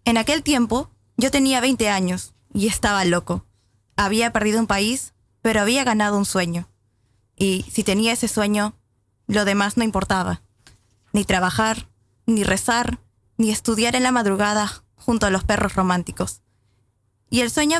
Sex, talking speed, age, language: female, 150 wpm, 10-29, Polish